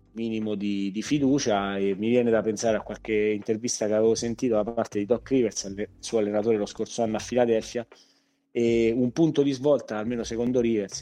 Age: 30-49